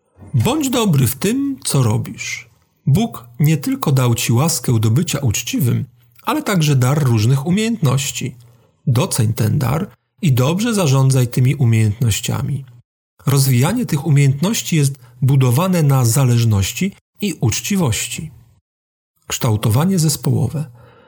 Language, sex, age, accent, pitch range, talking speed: Polish, male, 40-59, native, 125-165 Hz, 110 wpm